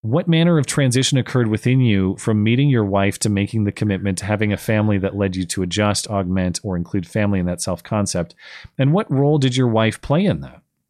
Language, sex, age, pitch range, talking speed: English, male, 30-49, 95-125 Hz, 220 wpm